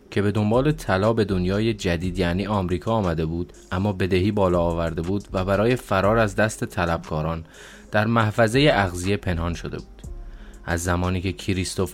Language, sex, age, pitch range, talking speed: Persian, male, 20-39, 90-110 Hz, 160 wpm